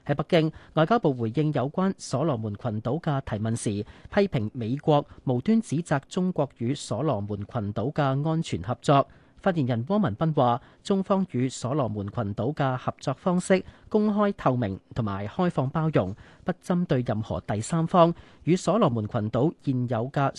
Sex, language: male, Chinese